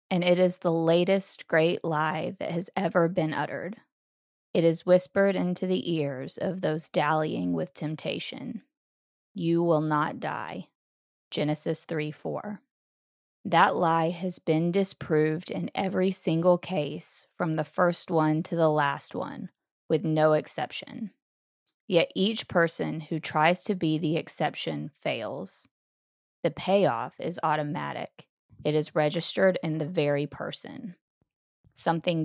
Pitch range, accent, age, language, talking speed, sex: 155-180 Hz, American, 20-39, English, 130 wpm, female